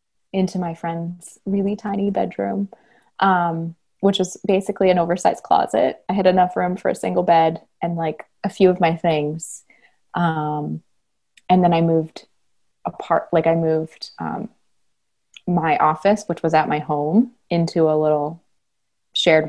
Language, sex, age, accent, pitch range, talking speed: English, female, 20-39, American, 160-205 Hz, 150 wpm